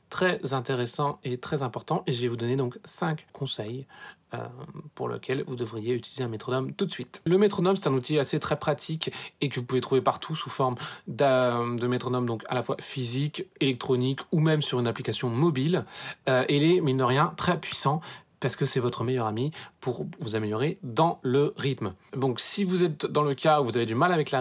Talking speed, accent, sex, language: 215 wpm, French, male, French